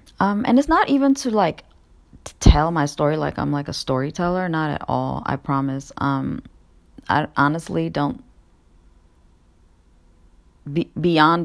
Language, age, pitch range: Amharic, 20-39, 90-150 Hz